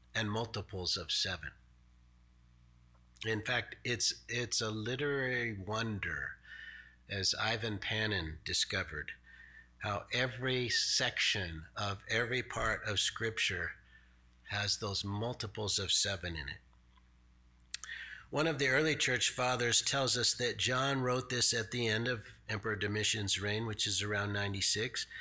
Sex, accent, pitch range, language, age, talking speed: male, American, 85-125 Hz, English, 50-69, 125 wpm